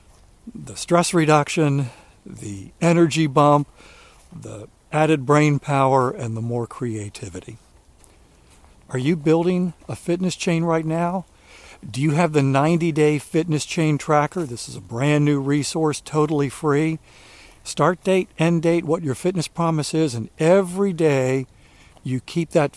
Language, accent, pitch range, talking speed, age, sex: English, American, 120-155 Hz, 140 wpm, 60-79, male